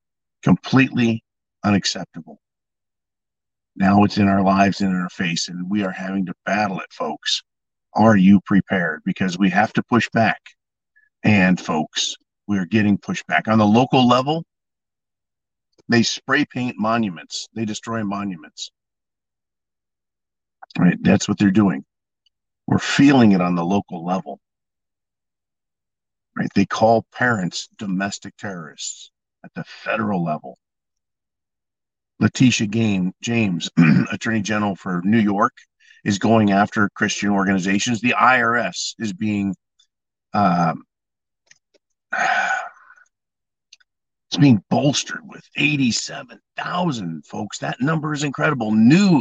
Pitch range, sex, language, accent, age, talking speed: 95-120 Hz, male, English, American, 50-69, 120 wpm